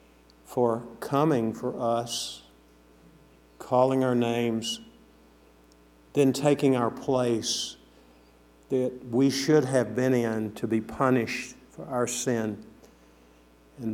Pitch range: 115-135 Hz